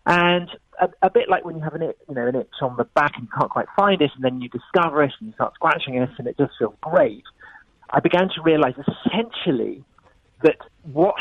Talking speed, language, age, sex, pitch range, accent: 225 wpm, English, 40-59, male, 120-160 Hz, British